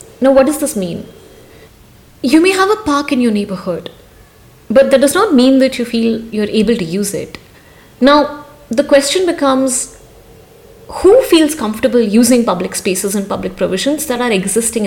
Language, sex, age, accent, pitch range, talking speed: English, female, 30-49, Indian, 220-290 Hz, 170 wpm